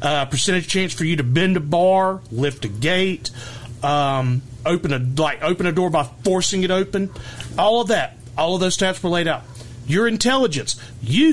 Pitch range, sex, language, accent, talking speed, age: 120-185 Hz, male, English, American, 185 wpm, 40-59